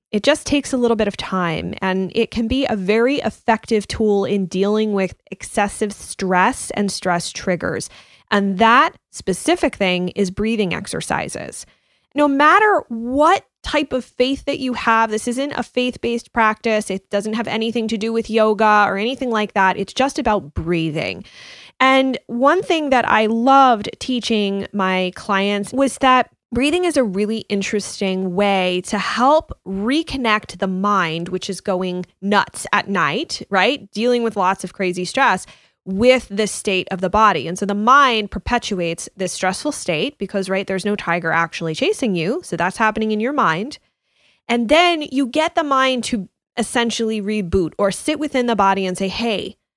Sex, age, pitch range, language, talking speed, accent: female, 20-39, 195-250 Hz, English, 170 wpm, American